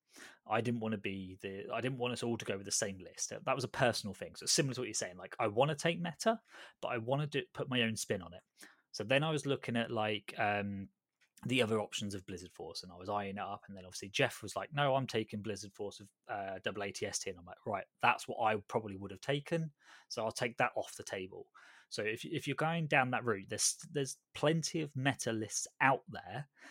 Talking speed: 255 wpm